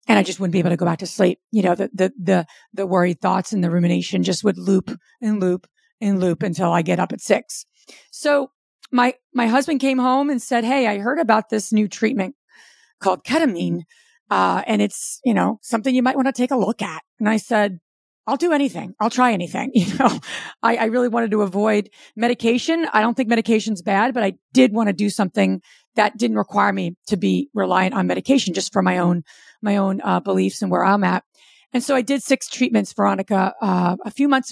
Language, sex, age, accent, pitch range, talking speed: English, female, 40-59, American, 195-245 Hz, 225 wpm